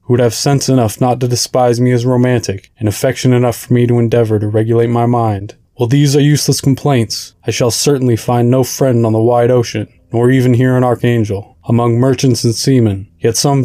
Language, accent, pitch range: English, American, 115-130 Hz